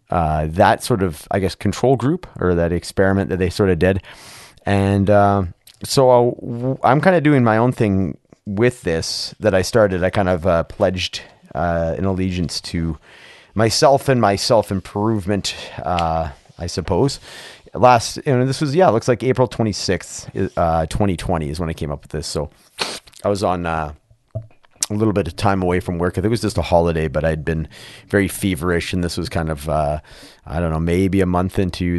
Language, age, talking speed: English, 30-49, 190 wpm